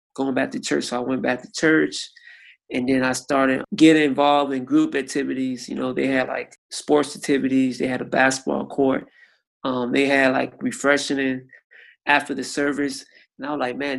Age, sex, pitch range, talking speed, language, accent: 20-39, male, 130-150 Hz, 190 wpm, English, American